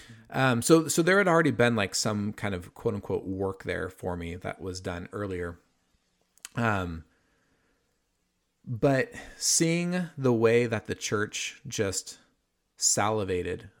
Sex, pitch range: male, 105-140 Hz